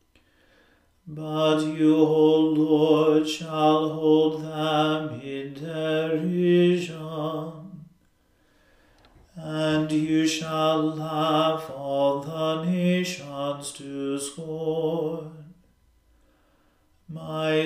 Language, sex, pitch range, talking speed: English, male, 155-160 Hz, 65 wpm